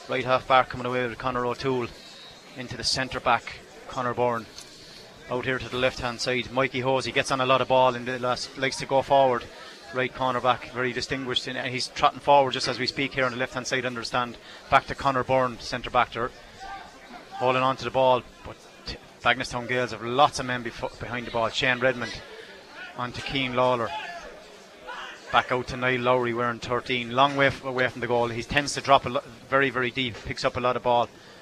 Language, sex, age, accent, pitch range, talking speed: English, male, 30-49, Irish, 125-140 Hz, 210 wpm